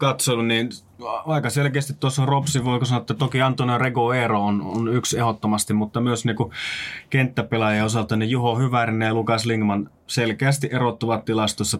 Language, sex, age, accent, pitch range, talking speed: Finnish, male, 20-39, native, 105-125 Hz, 155 wpm